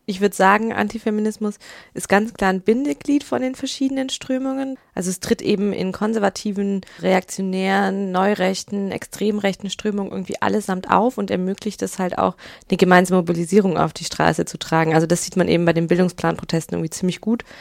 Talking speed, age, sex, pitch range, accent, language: 170 wpm, 20-39, female, 175-205 Hz, German, German